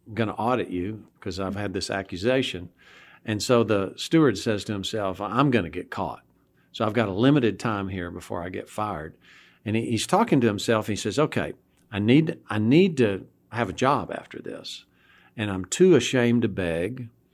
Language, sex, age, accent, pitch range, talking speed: English, male, 50-69, American, 95-125 Hz, 190 wpm